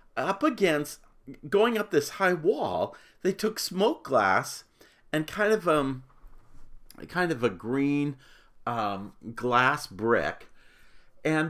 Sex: male